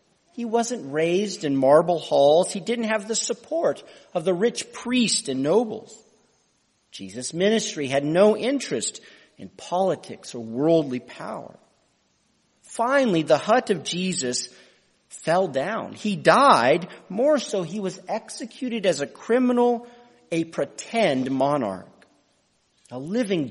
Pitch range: 140-225 Hz